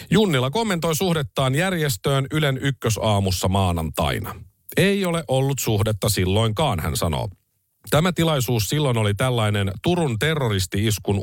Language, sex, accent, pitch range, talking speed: Finnish, male, native, 100-150 Hz, 110 wpm